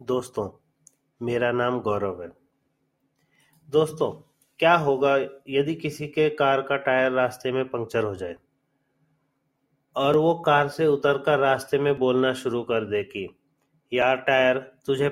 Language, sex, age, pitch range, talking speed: Hindi, male, 30-49, 130-150 Hz, 140 wpm